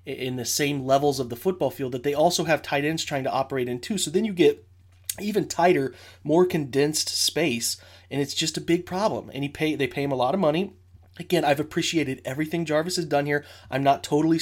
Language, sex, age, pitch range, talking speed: English, male, 30-49, 125-155 Hz, 230 wpm